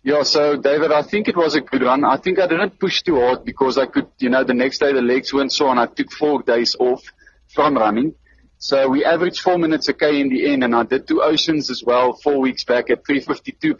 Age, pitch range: 30-49, 120-145 Hz